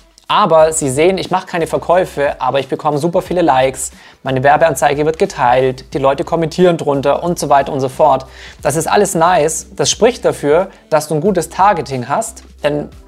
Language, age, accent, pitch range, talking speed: German, 20-39, German, 135-170 Hz, 190 wpm